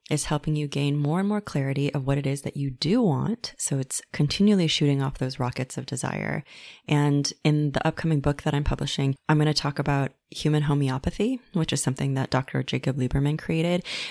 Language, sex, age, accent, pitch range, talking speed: English, female, 20-39, American, 140-160 Hz, 205 wpm